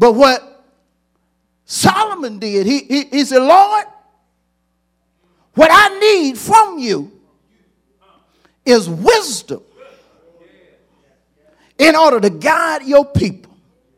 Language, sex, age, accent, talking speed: English, male, 50-69, American, 95 wpm